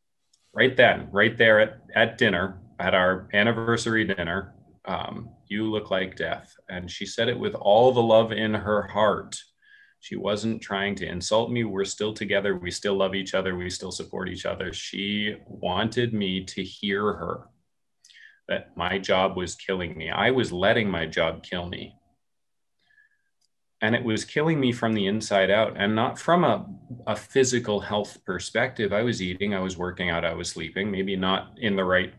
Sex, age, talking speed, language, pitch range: male, 30-49, 180 wpm, English, 100-130 Hz